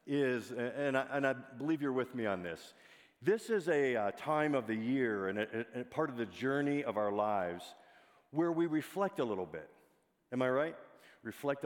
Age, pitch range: 50-69, 110-140 Hz